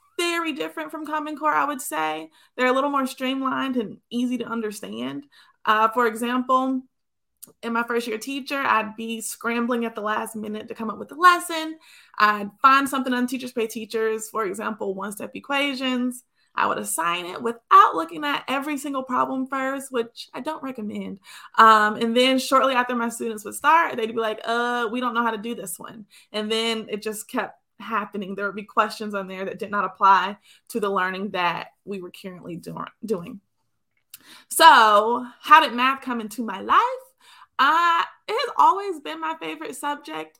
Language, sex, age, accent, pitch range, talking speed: English, female, 20-39, American, 215-265 Hz, 185 wpm